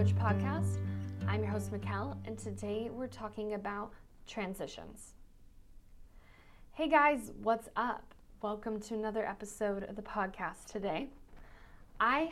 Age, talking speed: 10-29, 115 wpm